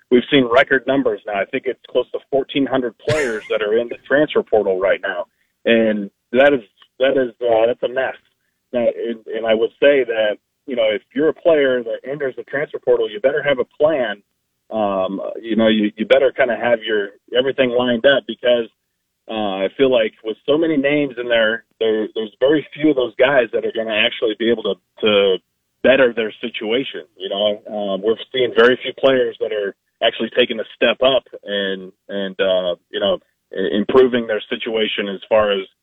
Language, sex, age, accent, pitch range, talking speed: English, male, 30-49, American, 110-175 Hz, 205 wpm